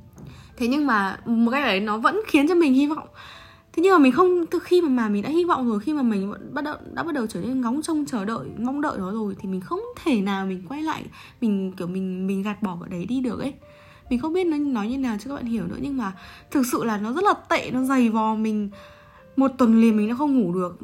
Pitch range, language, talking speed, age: 185-260 Hz, Vietnamese, 280 wpm, 10-29